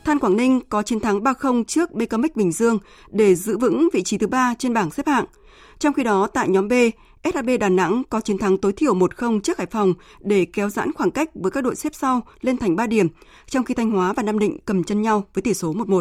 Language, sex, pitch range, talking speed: Vietnamese, female, 190-255 Hz, 250 wpm